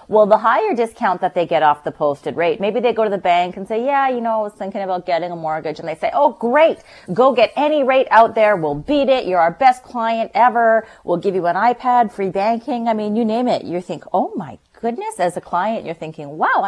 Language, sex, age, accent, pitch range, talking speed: English, female, 30-49, American, 155-220 Hz, 255 wpm